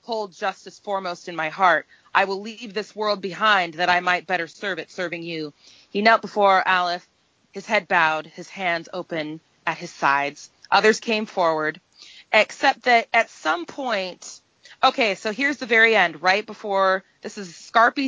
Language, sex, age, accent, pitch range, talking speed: English, female, 30-49, American, 170-210 Hz, 175 wpm